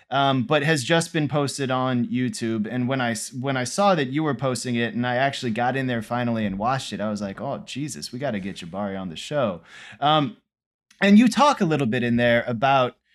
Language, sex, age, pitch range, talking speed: English, male, 20-39, 115-150 Hz, 235 wpm